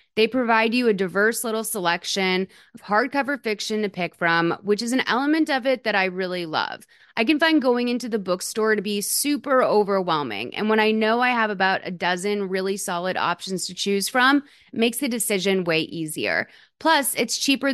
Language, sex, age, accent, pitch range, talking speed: English, female, 30-49, American, 190-250 Hz, 195 wpm